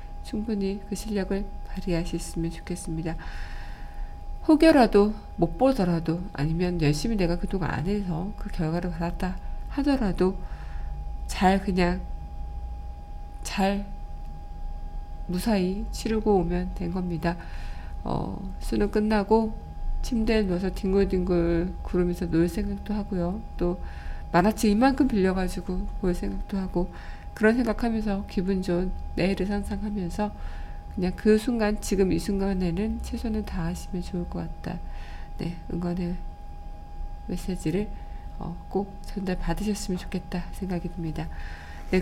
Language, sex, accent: Korean, female, native